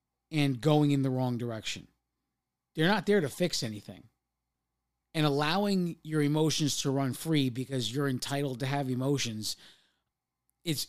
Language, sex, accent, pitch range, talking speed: English, male, American, 130-190 Hz, 145 wpm